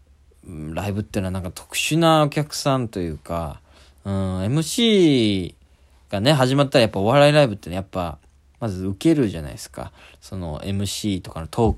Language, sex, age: Japanese, male, 20-39